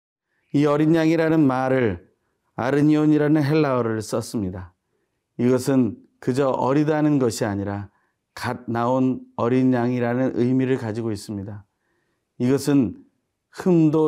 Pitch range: 110-150 Hz